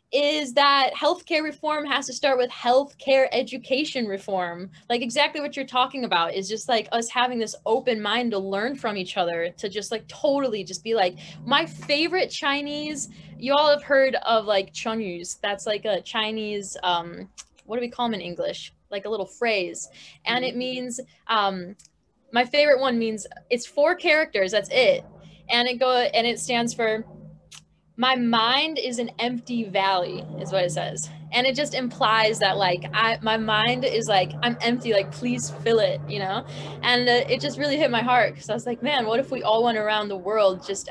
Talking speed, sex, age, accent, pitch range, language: 195 wpm, female, 10-29, American, 190-245 Hz, English